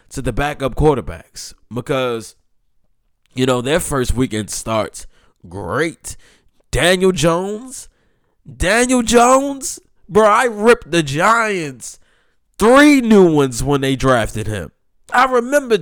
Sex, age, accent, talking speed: male, 20-39, American, 115 wpm